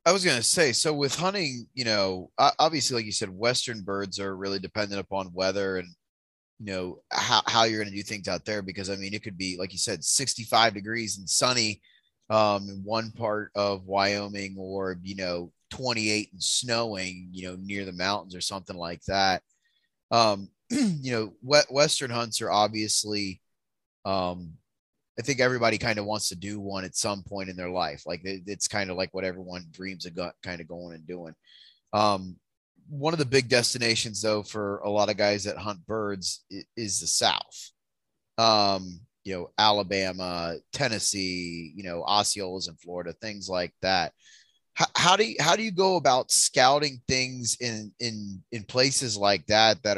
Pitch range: 95-110 Hz